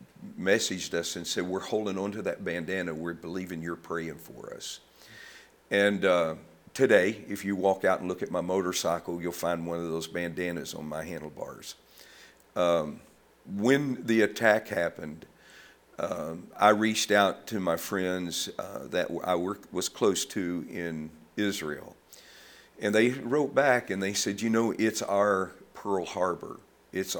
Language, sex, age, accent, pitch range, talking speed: English, male, 50-69, American, 85-105 Hz, 155 wpm